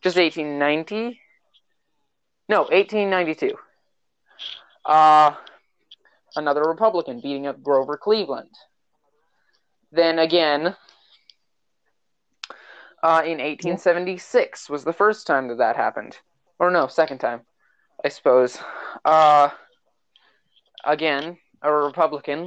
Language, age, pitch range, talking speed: English, 20-39, 150-200 Hz, 90 wpm